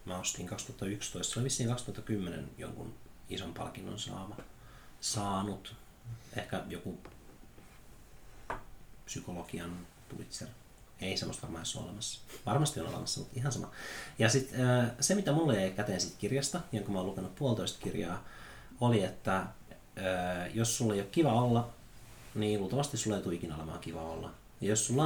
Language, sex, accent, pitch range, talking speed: Finnish, male, native, 95-120 Hz, 145 wpm